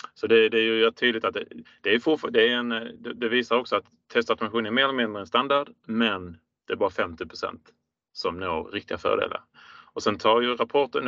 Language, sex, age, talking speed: Swedish, male, 30-49, 210 wpm